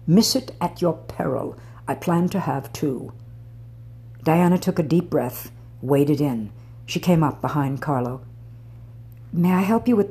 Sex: female